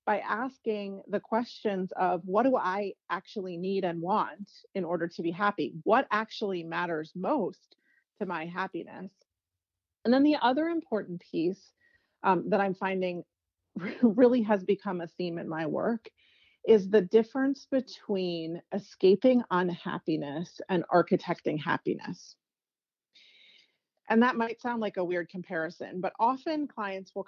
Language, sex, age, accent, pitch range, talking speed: English, female, 30-49, American, 175-220 Hz, 140 wpm